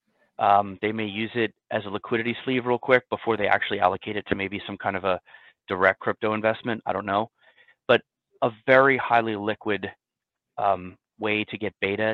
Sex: male